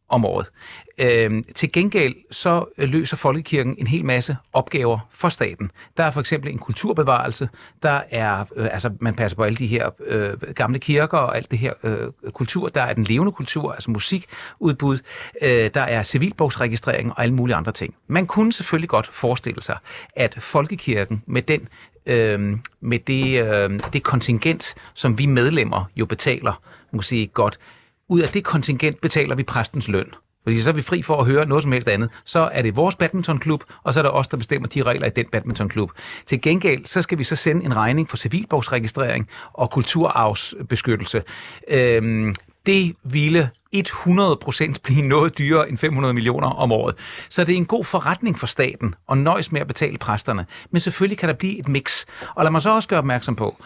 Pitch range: 115-160 Hz